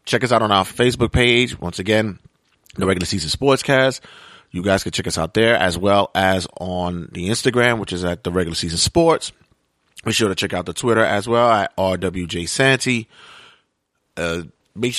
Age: 30-49